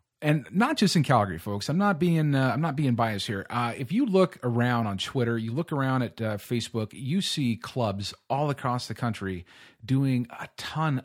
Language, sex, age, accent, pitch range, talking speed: English, male, 30-49, American, 120-155 Hz, 205 wpm